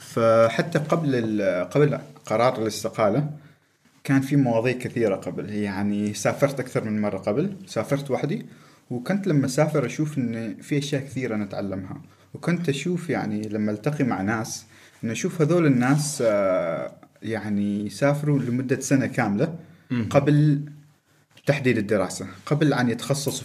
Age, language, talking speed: 30-49, Arabic, 125 wpm